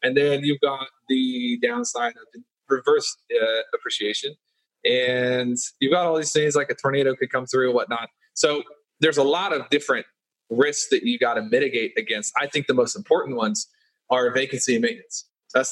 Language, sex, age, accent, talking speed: English, male, 30-49, American, 185 wpm